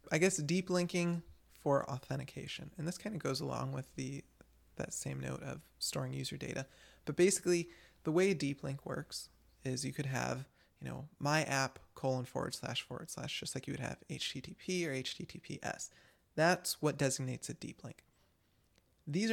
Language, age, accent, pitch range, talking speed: English, 20-39, American, 130-160 Hz, 175 wpm